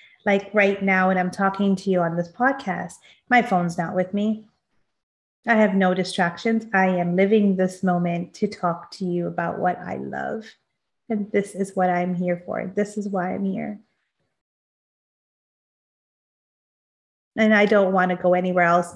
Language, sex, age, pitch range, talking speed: English, female, 30-49, 175-210 Hz, 170 wpm